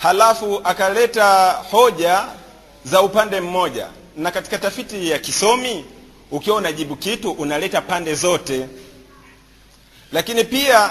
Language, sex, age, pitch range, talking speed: Swahili, male, 40-59, 165-205 Hz, 105 wpm